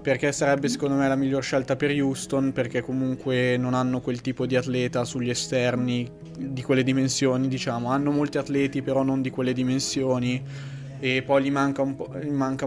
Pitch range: 125-135 Hz